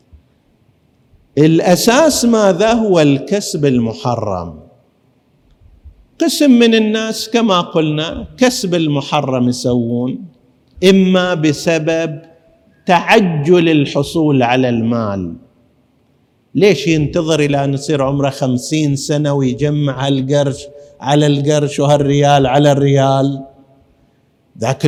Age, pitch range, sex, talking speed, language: 50-69, 135-190 Hz, male, 85 wpm, Arabic